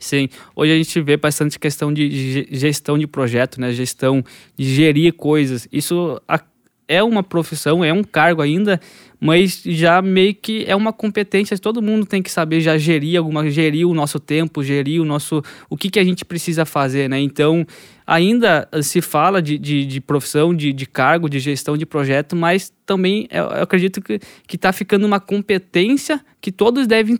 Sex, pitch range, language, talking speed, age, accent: male, 150-190 Hz, Portuguese, 180 wpm, 10-29, Brazilian